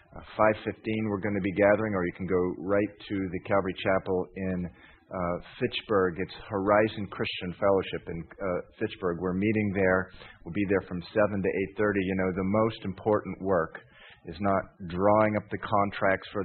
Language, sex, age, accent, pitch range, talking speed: English, male, 40-59, American, 90-105 Hz, 180 wpm